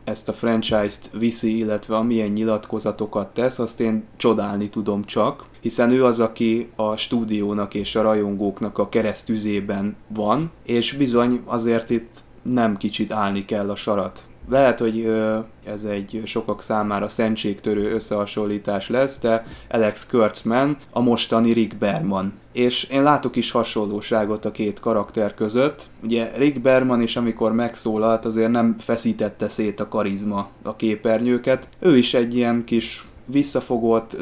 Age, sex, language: 20-39, male, Hungarian